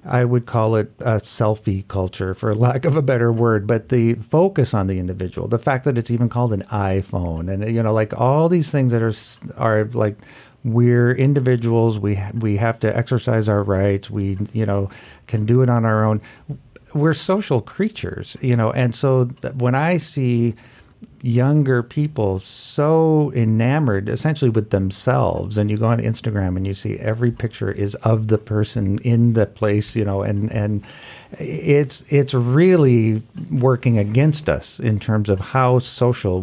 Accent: American